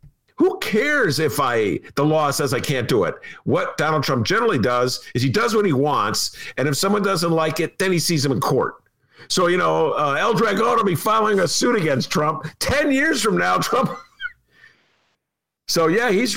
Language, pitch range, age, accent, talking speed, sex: English, 125-175 Hz, 50-69, American, 200 wpm, male